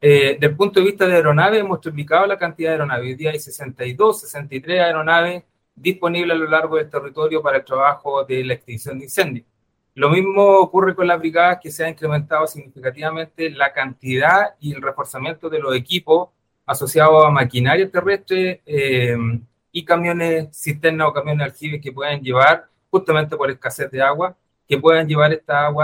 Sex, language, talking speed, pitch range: male, Spanish, 175 wpm, 135-170 Hz